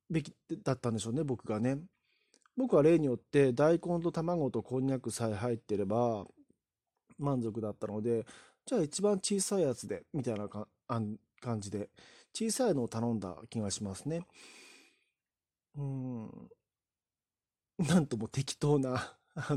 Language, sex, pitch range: Japanese, male, 115-165 Hz